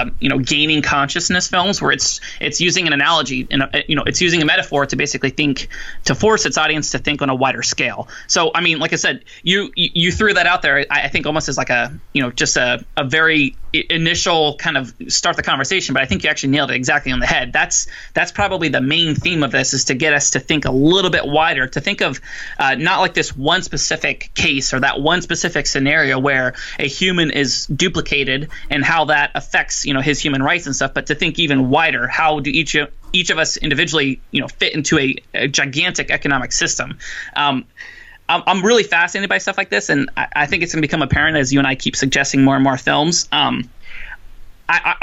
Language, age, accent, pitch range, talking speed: English, 20-39, American, 135-165 Hz, 230 wpm